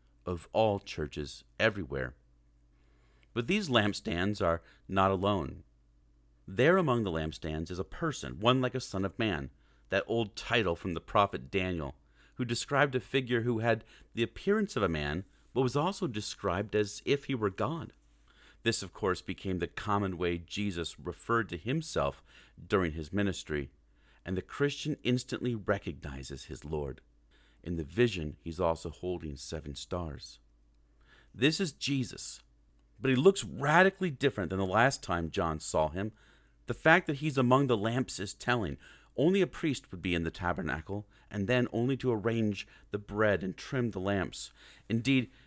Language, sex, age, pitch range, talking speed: English, male, 40-59, 75-120 Hz, 160 wpm